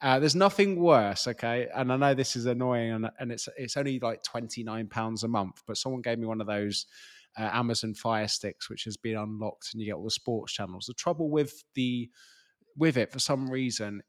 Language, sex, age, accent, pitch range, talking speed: English, male, 20-39, British, 110-140 Hz, 215 wpm